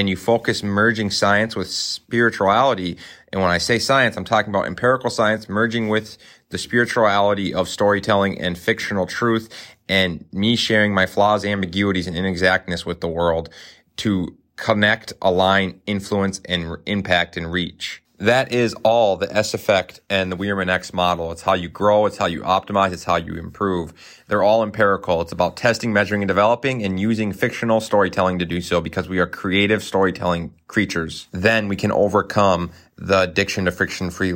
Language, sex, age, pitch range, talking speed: English, male, 30-49, 90-110 Hz, 170 wpm